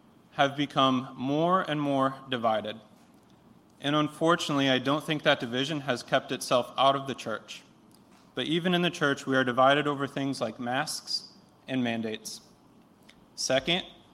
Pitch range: 125-150 Hz